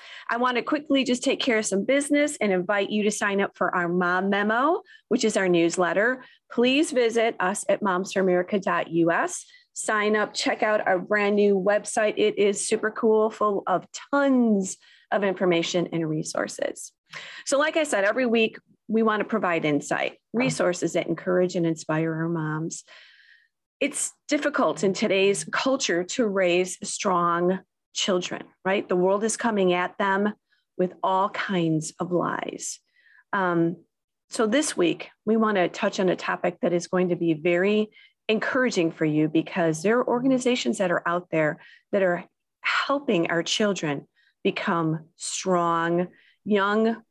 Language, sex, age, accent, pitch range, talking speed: English, female, 30-49, American, 175-225 Hz, 155 wpm